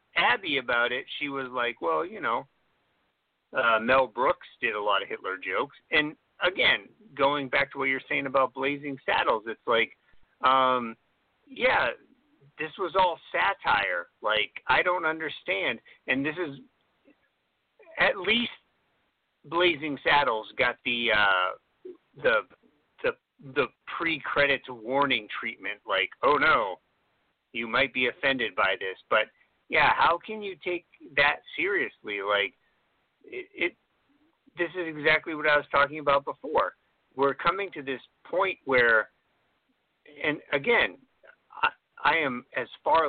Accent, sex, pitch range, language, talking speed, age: American, male, 130-195 Hz, English, 140 wpm, 50-69